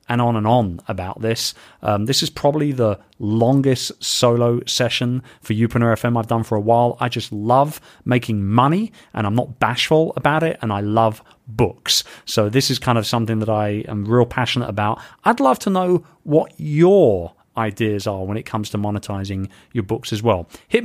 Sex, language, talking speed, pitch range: male, English, 195 wpm, 120-165 Hz